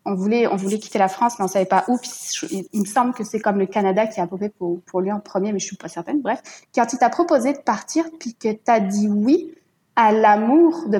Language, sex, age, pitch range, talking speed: French, female, 20-39, 210-260 Hz, 295 wpm